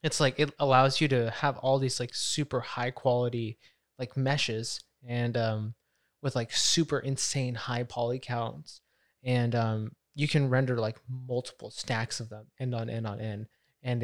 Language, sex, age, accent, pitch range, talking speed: English, male, 20-39, American, 115-140 Hz, 170 wpm